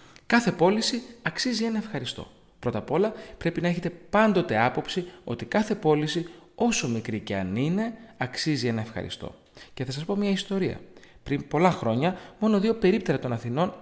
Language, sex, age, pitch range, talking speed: Greek, male, 30-49, 120-180 Hz, 165 wpm